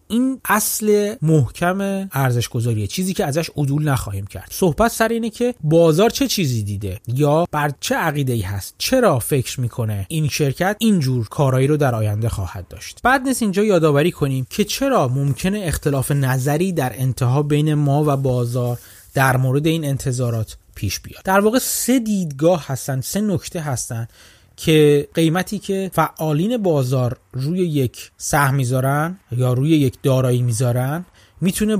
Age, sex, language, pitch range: 30-49, male, Persian, 125-185 Hz